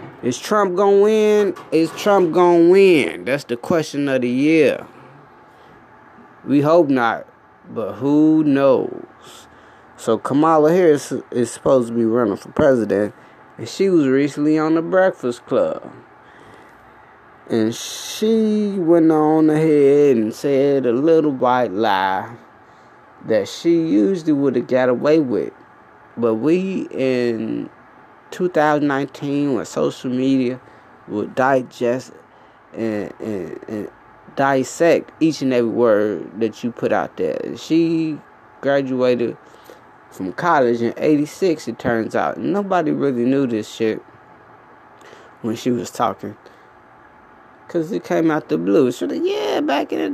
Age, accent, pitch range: 20-39, American, 120-170 Hz